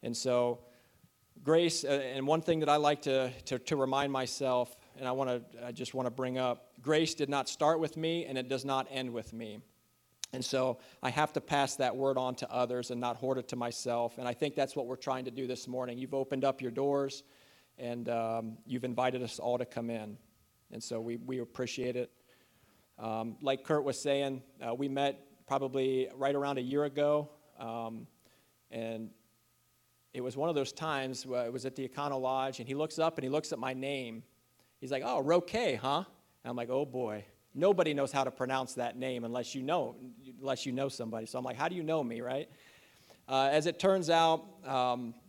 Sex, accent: male, American